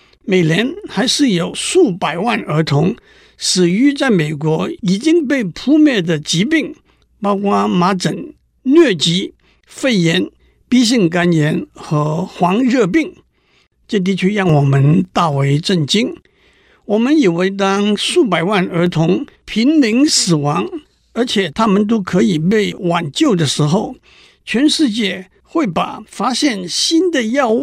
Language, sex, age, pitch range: Chinese, male, 60-79, 170-255 Hz